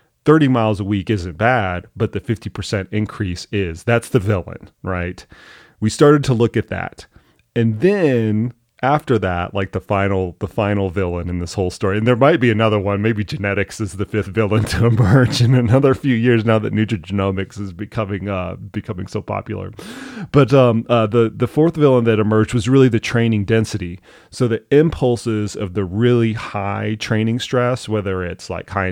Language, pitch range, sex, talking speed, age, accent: English, 95-120 Hz, male, 185 wpm, 30-49, American